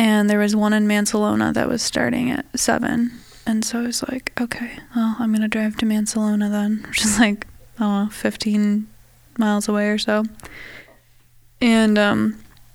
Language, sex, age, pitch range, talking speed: English, female, 20-39, 205-235 Hz, 165 wpm